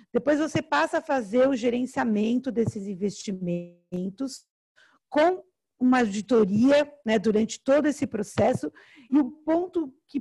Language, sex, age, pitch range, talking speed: Portuguese, female, 50-69, 210-290 Hz, 125 wpm